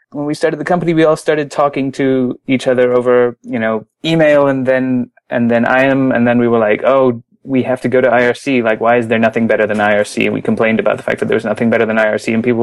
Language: English